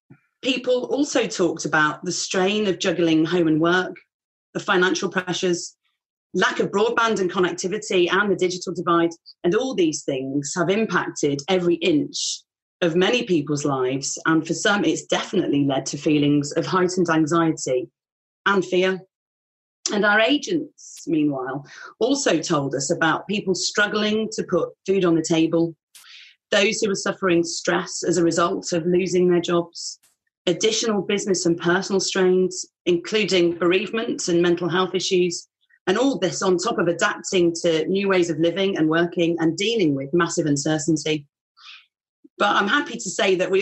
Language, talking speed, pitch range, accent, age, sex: English, 155 wpm, 170-205 Hz, British, 30-49, female